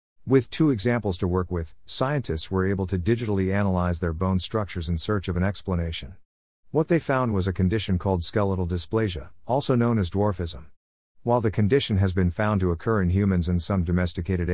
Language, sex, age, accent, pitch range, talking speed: English, male, 50-69, American, 90-110 Hz, 190 wpm